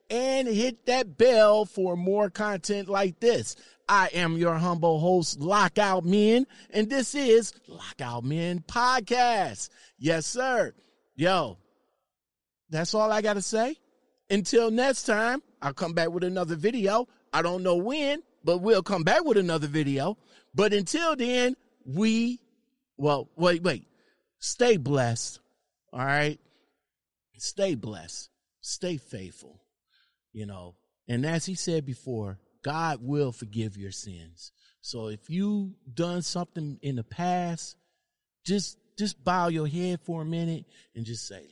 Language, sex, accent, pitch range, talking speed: English, male, American, 140-210 Hz, 140 wpm